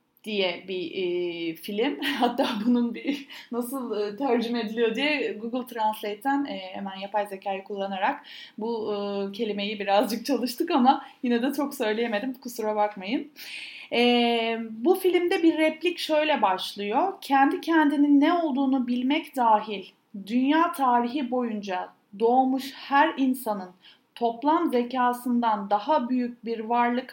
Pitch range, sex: 215-290 Hz, female